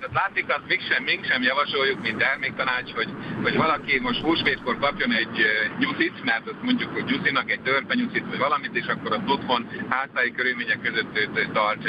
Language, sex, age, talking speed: Hungarian, male, 60-79, 170 wpm